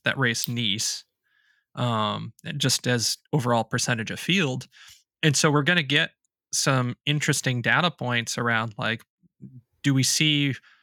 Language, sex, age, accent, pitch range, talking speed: English, male, 20-39, American, 120-140 Hz, 140 wpm